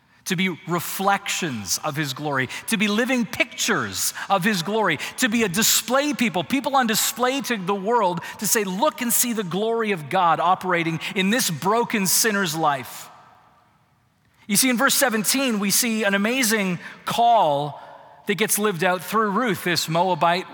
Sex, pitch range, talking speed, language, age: male, 155-230 Hz, 165 wpm, English, 40-59